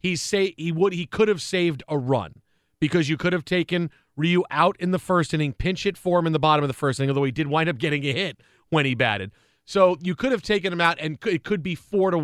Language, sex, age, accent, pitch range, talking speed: English, male, 40-59, American, 140-180 Hz, 275 wpm